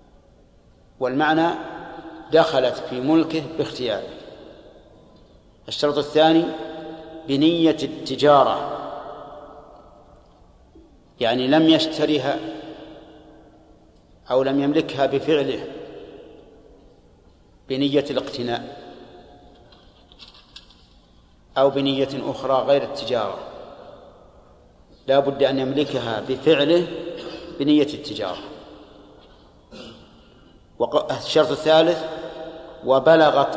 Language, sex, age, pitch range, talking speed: Arabic, male, 50-69, 125-155 Hz, 60 wpm